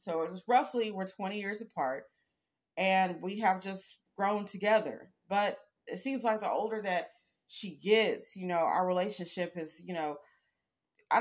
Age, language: 30-49, English